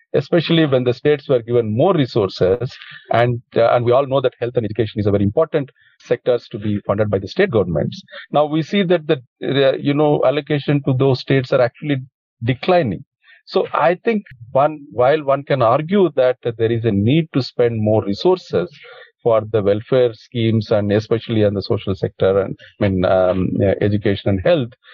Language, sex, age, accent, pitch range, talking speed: English, male, 40-59, Indian, 110-140 Hz, 195 wpm